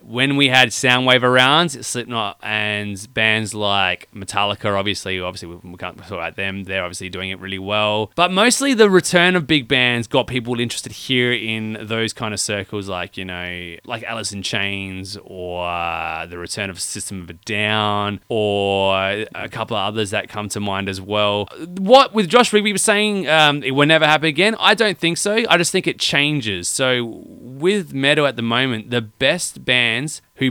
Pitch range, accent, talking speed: 100-135 Hz, Australian, 190 wpm